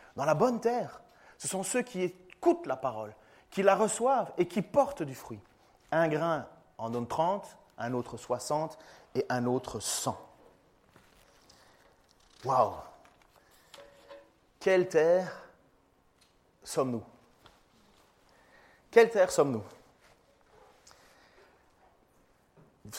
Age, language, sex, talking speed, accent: 30-49, French, male, 100 wpm, French